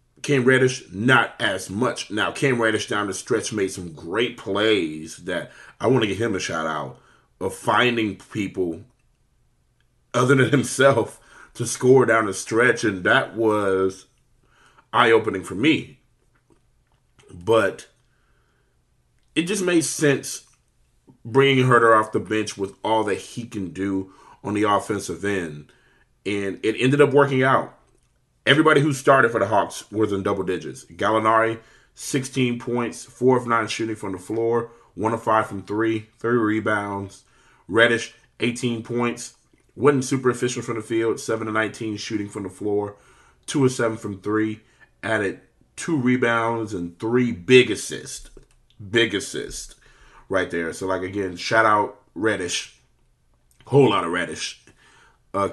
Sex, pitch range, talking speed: male, 100-125 Hz, 150 wpm